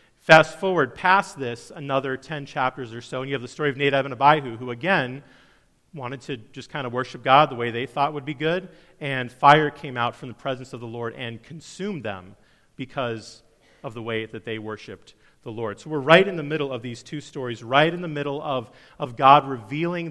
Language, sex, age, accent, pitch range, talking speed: English, male, 40-59, American, 130-160 Hz, 220 wpm